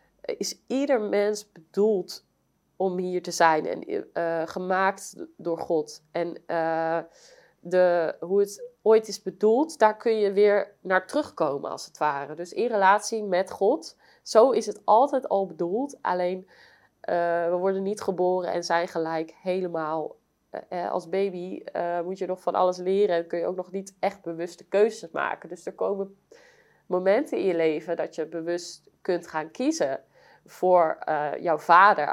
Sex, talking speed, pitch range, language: female, 165 wpm, 170-200 Hz, Dutch